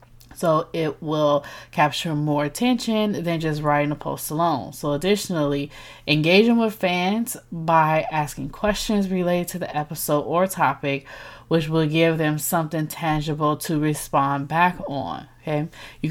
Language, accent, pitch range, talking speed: English, American, 150-180 Hz, 140 wpm